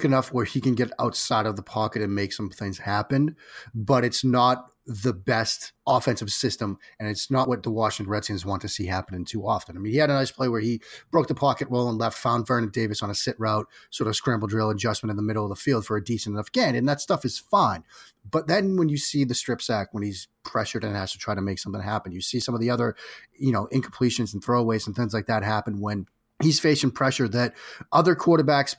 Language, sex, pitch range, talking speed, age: English, male, 105-135 Hz, 250 wpm, 30-49